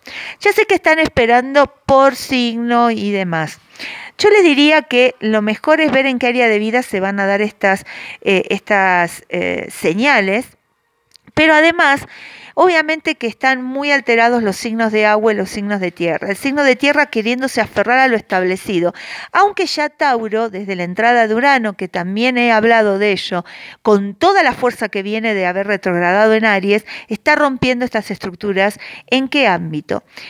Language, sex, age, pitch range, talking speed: Spanish, female, 40-59, 195-265 Hz, 175 wpm